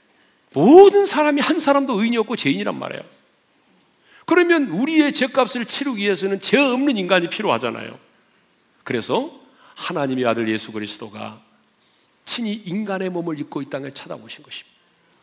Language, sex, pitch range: Korean, male, 175-280 Hz